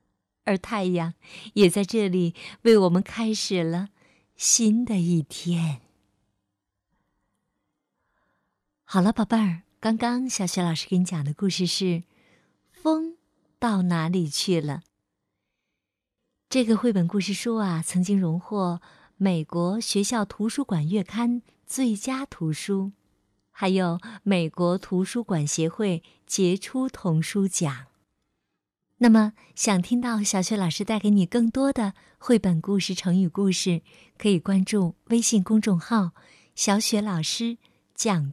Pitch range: 175-225 Hz